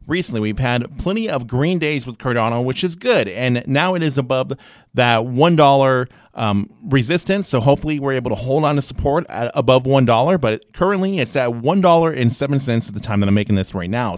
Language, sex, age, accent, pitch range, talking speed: English, male, 30-49, American, 120-180 Hz, 225 wpm